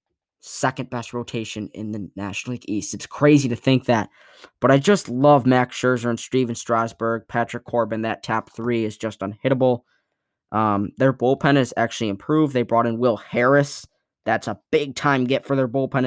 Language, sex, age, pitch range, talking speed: English, male, 10-29, 115-140 Hz, 180 wpm